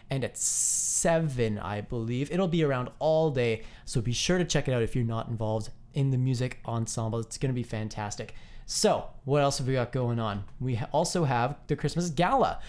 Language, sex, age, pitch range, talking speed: English, male, 20-39, 120-160 Hz, 205 wpm